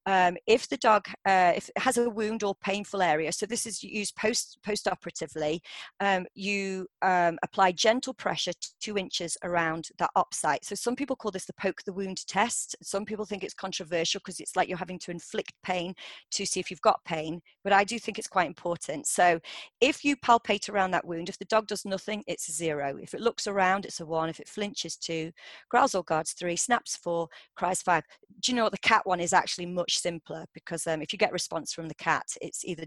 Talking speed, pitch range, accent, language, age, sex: 215 wpm, 175-215 Hz, British, English, 30-49, female